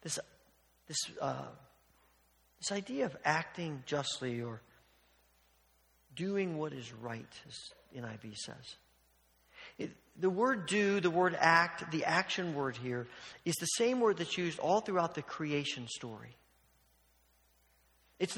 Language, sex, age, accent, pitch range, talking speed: English, male, 50-69, American, 120-170 Hz, 125 wpm